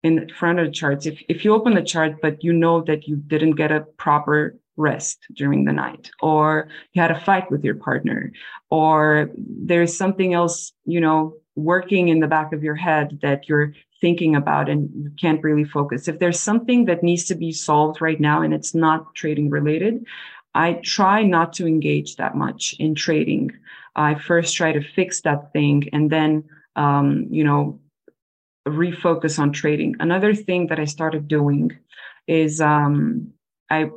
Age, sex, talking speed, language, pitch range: 20-39, female, 180 wpm, English, 150-170 Hz